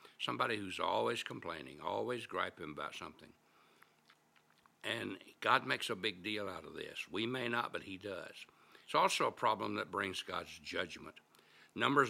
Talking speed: 160 wpm